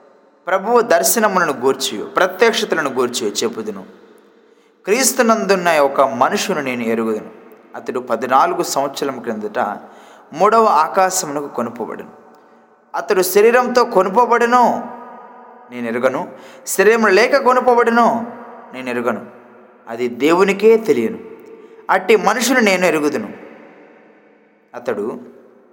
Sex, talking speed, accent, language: male, 85 wpm, native, Telugu